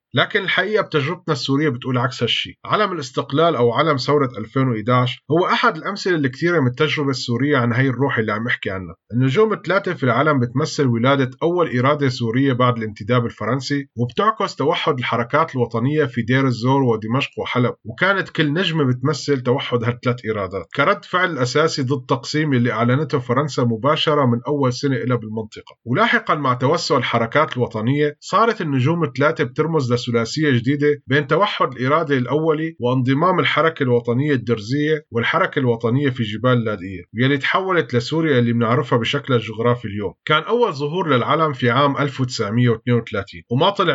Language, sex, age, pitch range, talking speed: Arabic, male, 30-49, 120-155 Hz, 150 wpm